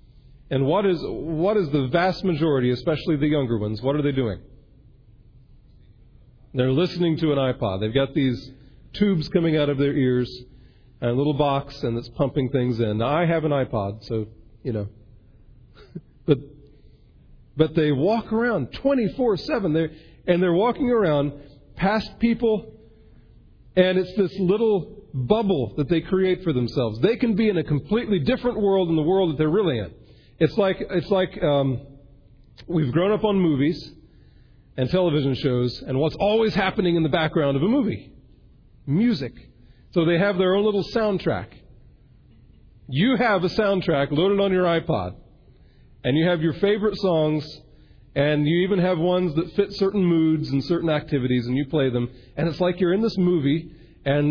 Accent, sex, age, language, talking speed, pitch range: American, male, 40-59, English, 170 wpm, 125-180 Hz